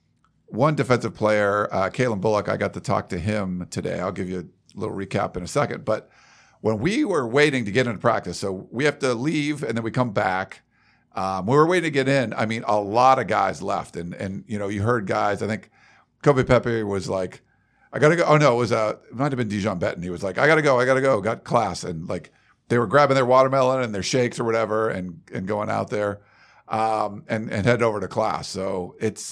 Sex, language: male, English